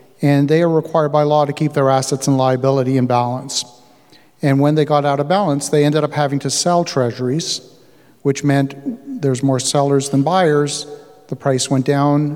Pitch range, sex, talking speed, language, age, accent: 135-155 Hz, male, 190 wpm, English, 50-69, American